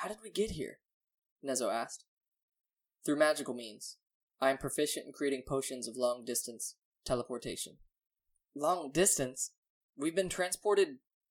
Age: 10-29